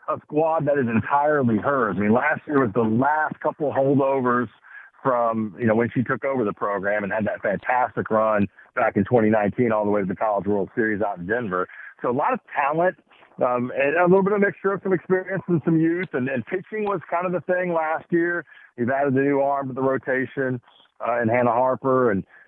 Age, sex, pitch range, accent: 40-59, male, 110-145 Hz, American